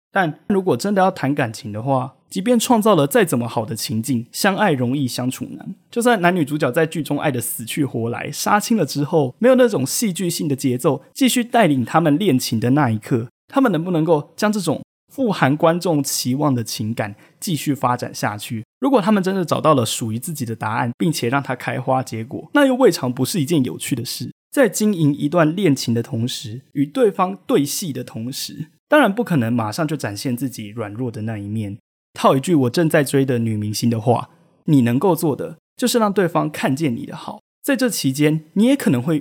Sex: male